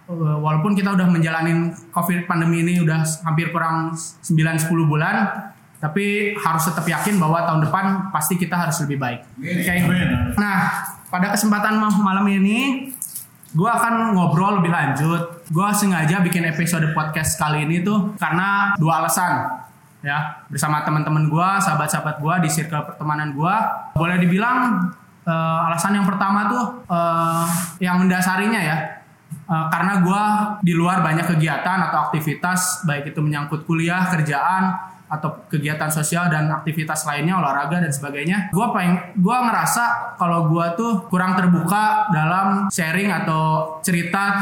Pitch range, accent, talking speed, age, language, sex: 160-195 Hz, native, 140 wpm, 20-39, Indonesian, male